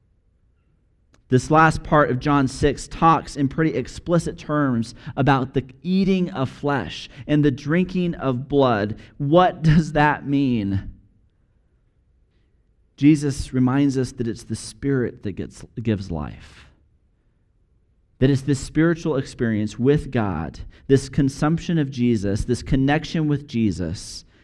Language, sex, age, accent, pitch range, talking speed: English, male, 40-59, American, 105-150 Hz, 125 wpm